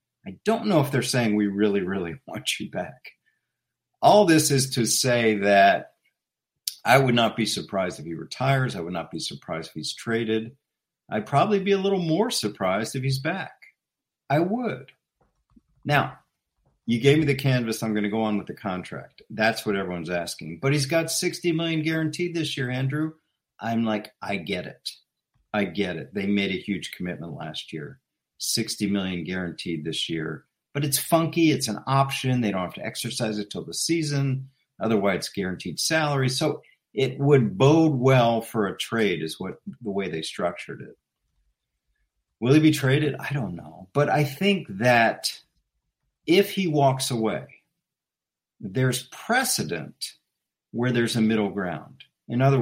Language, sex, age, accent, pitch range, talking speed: English, male, 50-69, American, 105-145 Hz, 170 wpm